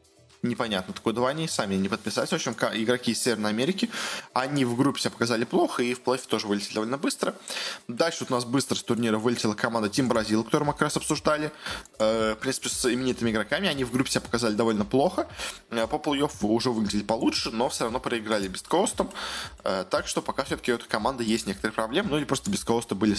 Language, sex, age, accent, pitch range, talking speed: Russian, male, 20-39, native, 110-135 Hz, 210 wpm